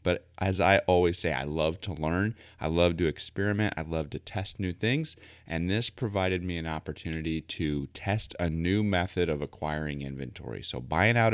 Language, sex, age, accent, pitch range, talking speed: English, male, 30-49, American, 80-100 Hz, 190 wpm